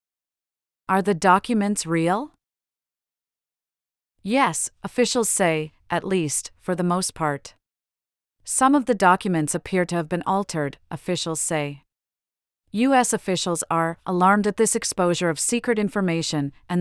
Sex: female